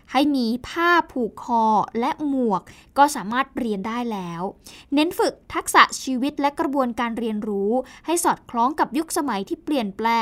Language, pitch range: Thai, 225-295 Hz